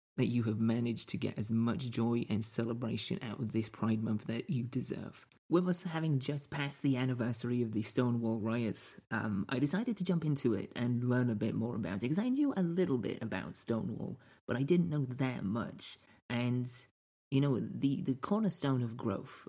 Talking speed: 205 wpm